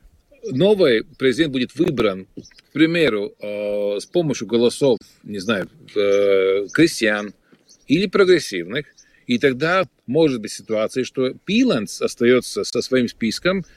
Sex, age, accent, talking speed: male, 50-69, native, 120 wpm